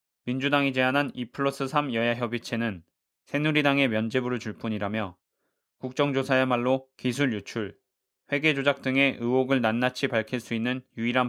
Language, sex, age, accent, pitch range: Korean, male, 20-39, native, 115-140 Hz